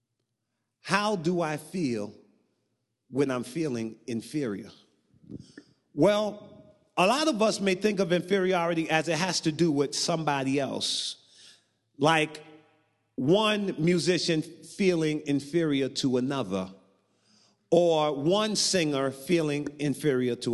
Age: 40-59